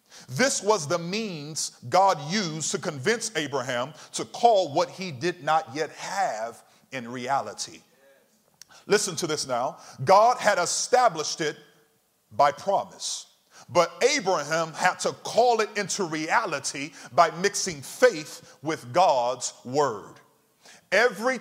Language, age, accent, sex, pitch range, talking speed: English, 40-59, American, male, 160-225 Hz, 125 wpm